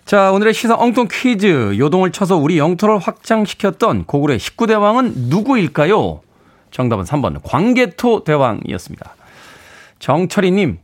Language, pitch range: Korean, 125-185 Hz